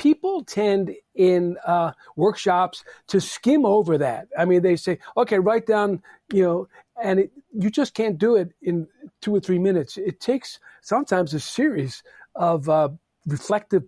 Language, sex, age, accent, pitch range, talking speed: English, male, 50-69, American, 155-195 Hz, 160 wpm